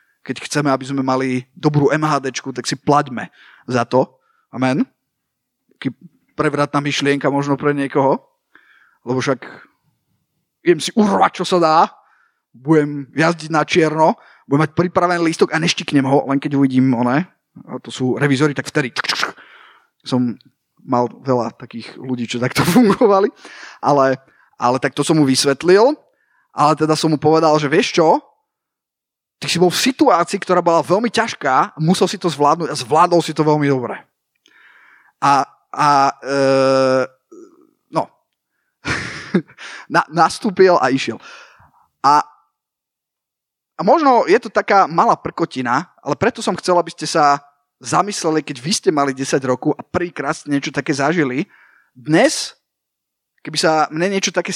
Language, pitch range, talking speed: Slovak, 135-175 Hz, 145 wpm